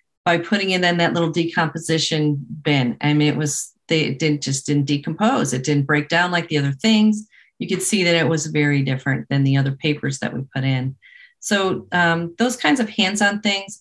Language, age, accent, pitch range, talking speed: English, 40-59, American, 150-180 Hz, 210 wpm